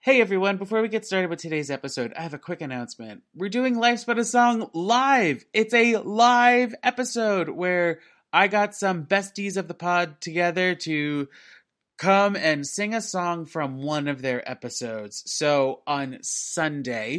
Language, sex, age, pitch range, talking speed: English, male, 30-49, 145-200 Hz, 170 wpm